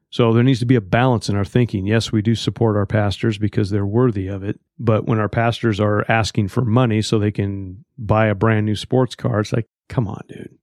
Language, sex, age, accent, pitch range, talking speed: English, male, 40-59, American, 110-130 Hz, 245 wpm